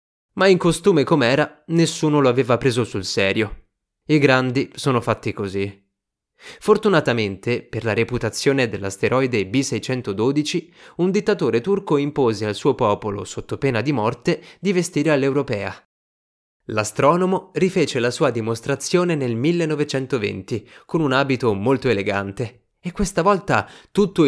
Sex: male